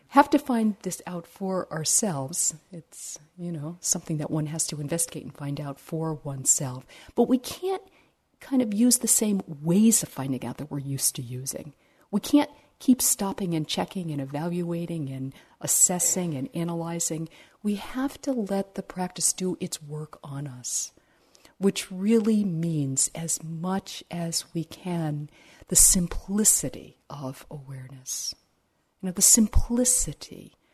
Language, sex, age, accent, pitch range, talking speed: English, female, 50-69, American, 140-185 Hz, 150 wpm